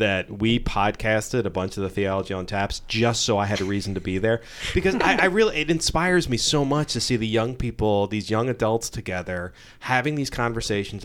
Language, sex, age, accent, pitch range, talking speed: English, male, 30-49, American, 100-125 Hz, 215 wpm